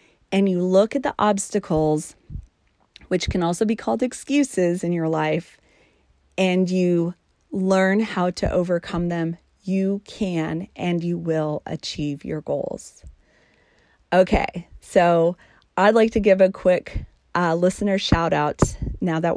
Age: 30-49